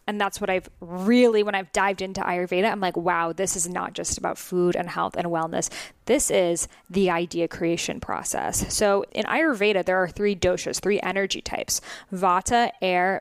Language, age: English, 10-29